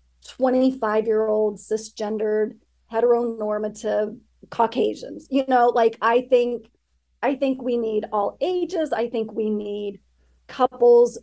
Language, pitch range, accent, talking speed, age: English, 215-260 Hz, American, 120 wpm, 40-59